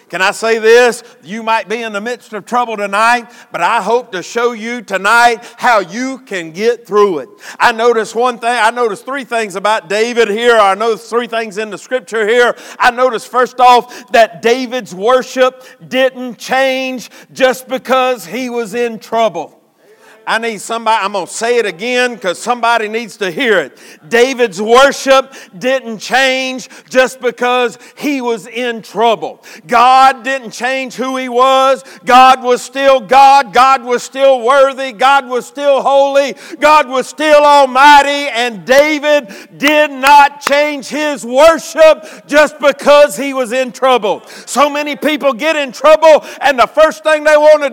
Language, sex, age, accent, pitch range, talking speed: English, male, 50-69, American, 230-275 Hz, 165 wpm